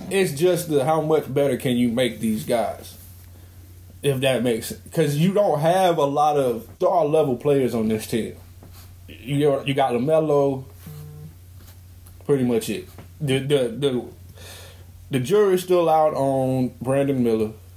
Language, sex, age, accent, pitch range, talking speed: English, male, 20-39, American, 95-150 Hz, 150 wpm